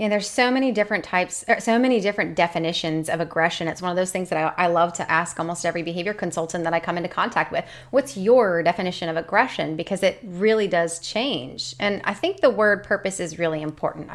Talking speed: 225 wpm